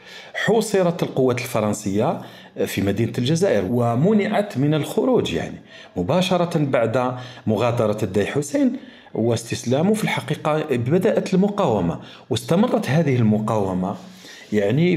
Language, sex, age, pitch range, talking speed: Arabic, male, 50-69, 115-165 Hz, 95 wpm